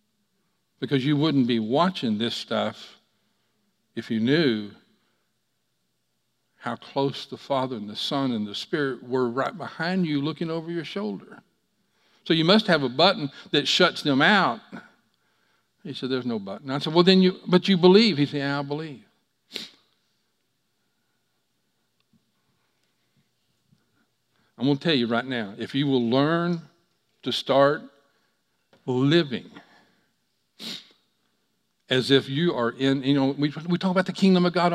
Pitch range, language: 155-230 Hz, English